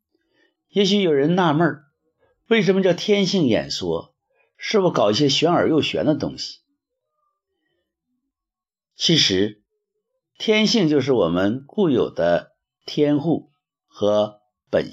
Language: Chinese